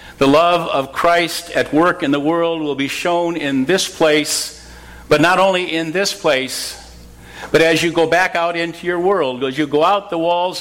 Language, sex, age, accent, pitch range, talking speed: English, male, 50-69, American, 135-170 Hz, 205 wpm